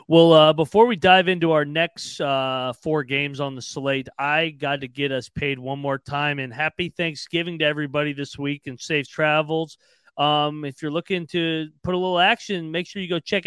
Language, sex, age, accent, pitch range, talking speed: English, male, 30-49, American, 130-165 Hz, 210 wpm